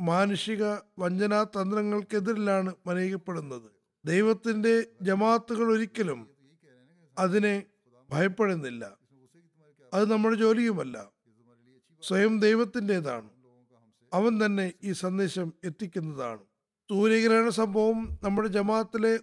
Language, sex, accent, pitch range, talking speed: Malayalam, male, native, 165-220 Hz, 70 wpm